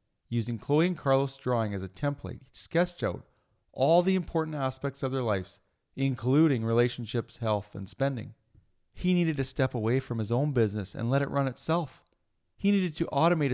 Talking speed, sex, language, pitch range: 180 wpm, male, English, 115-155 Hz